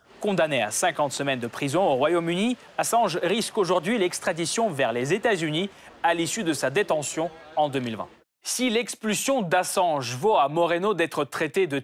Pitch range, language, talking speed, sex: 155-215 Hz, French, 155 wpm, male